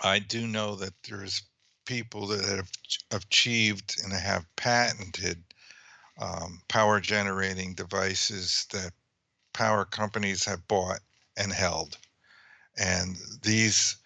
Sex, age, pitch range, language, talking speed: male, 50-69, 95-110 Hz, English, 105 wpm